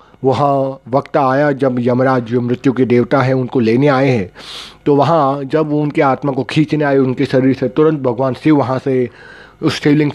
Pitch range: 125-145 Hz